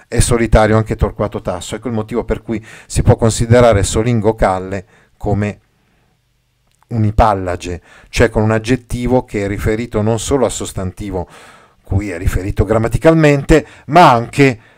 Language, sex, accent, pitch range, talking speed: Italian, male, native, 105-130 Hz, 140 wpm